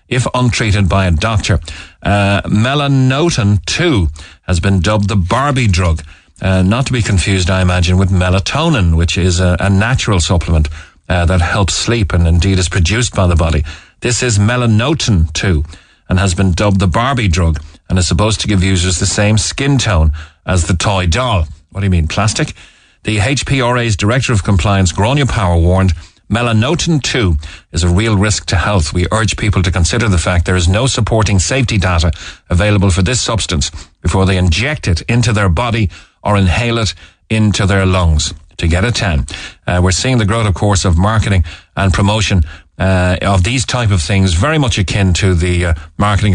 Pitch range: 90-110 Hz